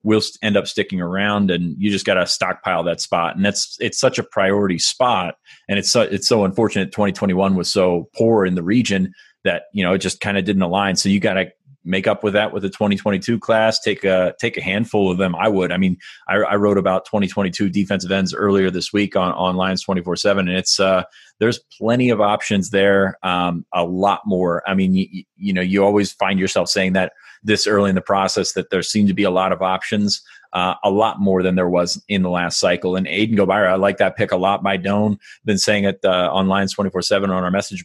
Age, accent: 30-49, American